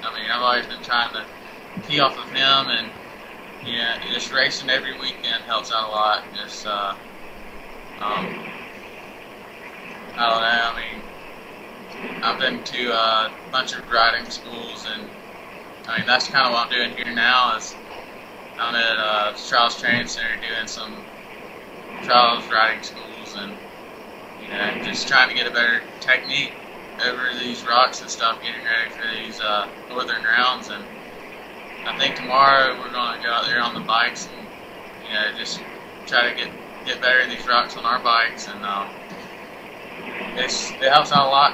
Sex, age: male, 20-39